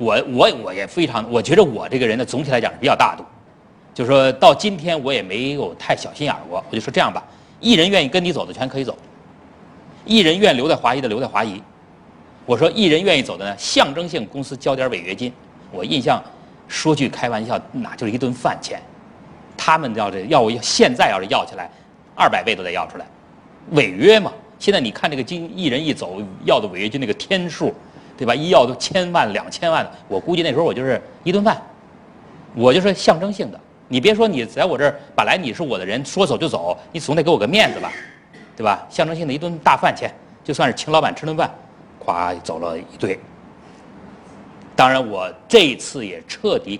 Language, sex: Chinese, male